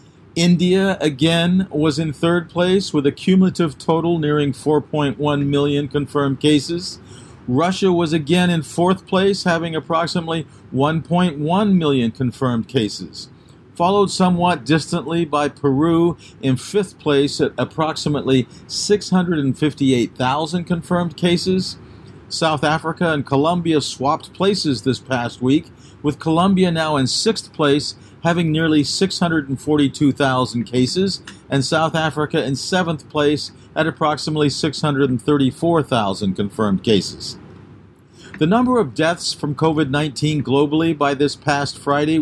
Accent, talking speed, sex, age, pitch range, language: American, 115 wpm, male, 50-69, 140-170 Hz, English